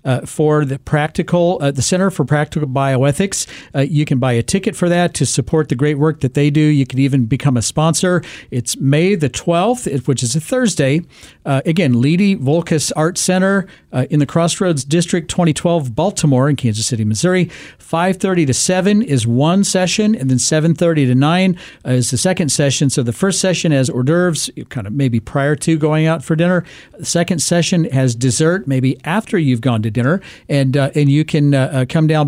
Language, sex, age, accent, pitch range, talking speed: English, male, 50-69, American, 130-170 Hz, 205 wpm